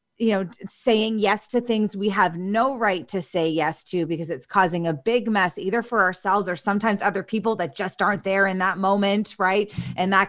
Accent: American